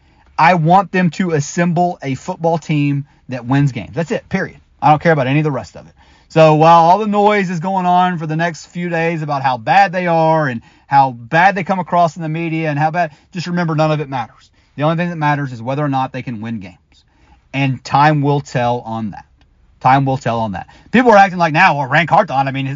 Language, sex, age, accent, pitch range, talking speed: English, male, 30-49, American, 135-175 Hz, 250 wpm